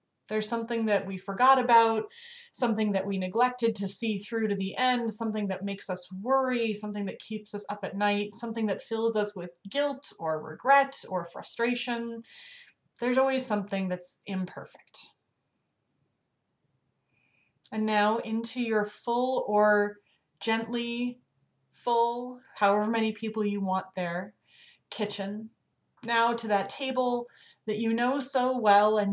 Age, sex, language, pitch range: 30-49, female, English, 190-235 Hz